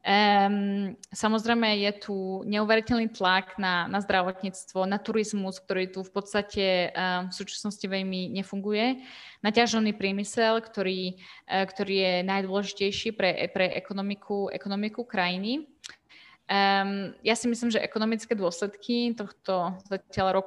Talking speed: 120 wpm